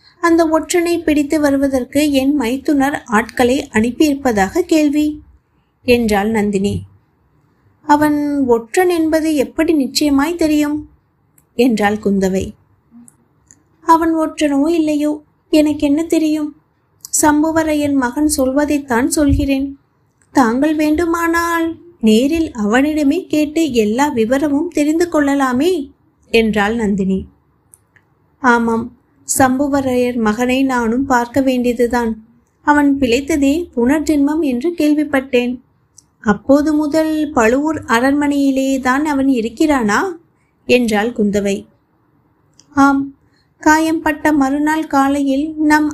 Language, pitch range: Tamil, 250-310 Hz